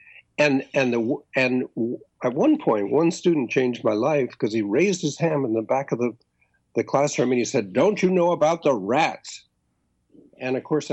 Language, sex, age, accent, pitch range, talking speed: English, male, 60-79, American, 115-160 Hz, 200 wpm